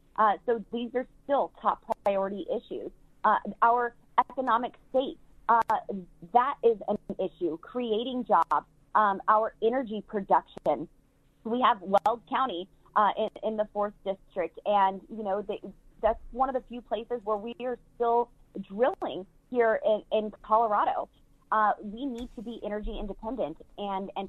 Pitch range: 195-245 Hz